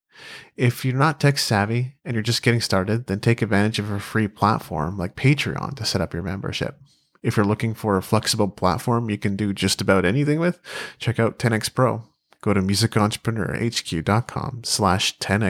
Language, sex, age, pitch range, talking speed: English, male, 30-49, 100-130 Hz, 180 wpm